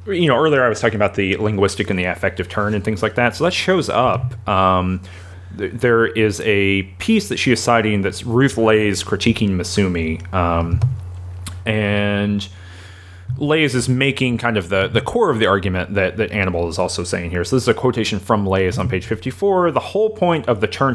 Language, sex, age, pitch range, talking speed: English, male, 30-49, 95-125 Hz, 205 wpm